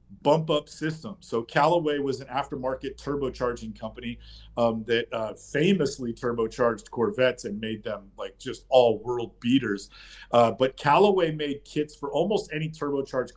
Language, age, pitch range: English, 40-59, 120-150 Hz